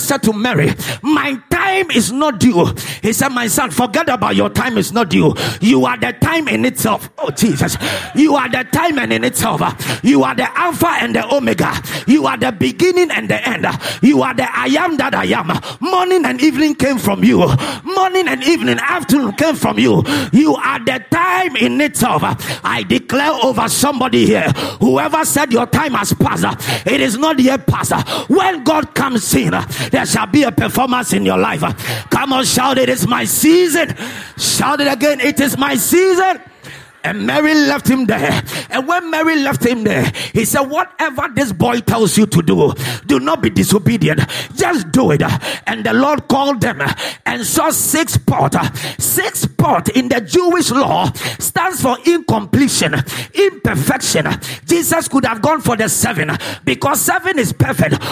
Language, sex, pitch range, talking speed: English, male, 255-330 Hz, 180 wpm